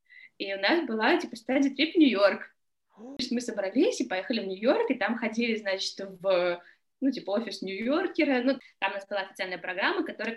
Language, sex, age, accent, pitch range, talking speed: Russian, female, 20-39, native, 185-255 Hz, 195 wpm